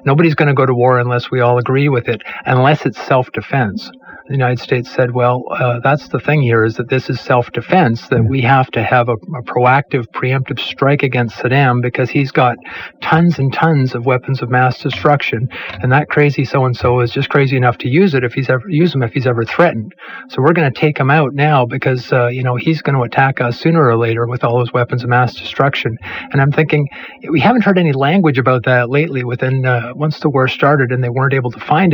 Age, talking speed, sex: 50-69, 230 wpm, male